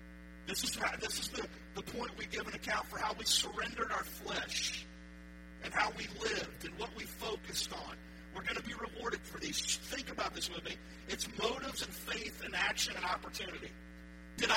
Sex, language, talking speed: male, English, 190 wpm